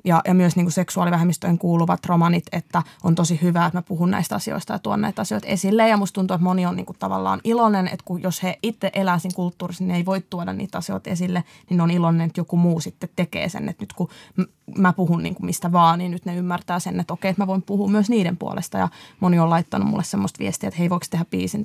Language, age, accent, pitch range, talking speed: Finnish, 20-39, native, 170-195 Hz, 240 wpm